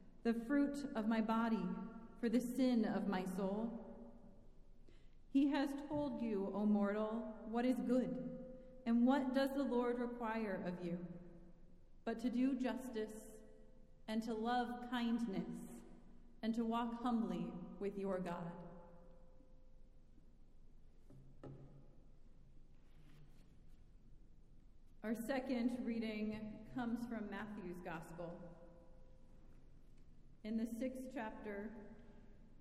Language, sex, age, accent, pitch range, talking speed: English, female, 30-49, American, 200-250 Hz, 100 wpm